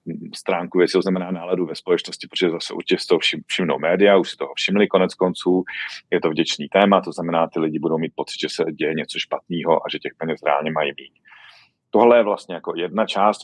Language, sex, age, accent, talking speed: Czech, male, 40-59, native, 220 wpm